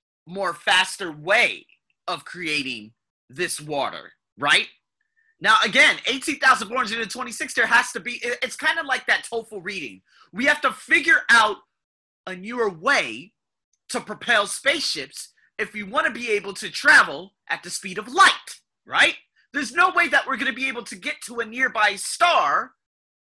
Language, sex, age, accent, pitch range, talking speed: English, male, 30-49, American, 210-275 Hz, 160 wpm